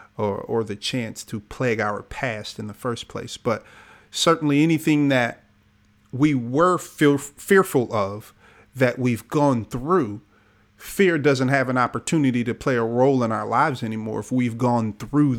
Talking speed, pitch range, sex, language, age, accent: 165 wpm, 105-140 Hz, male, English, 40-59, American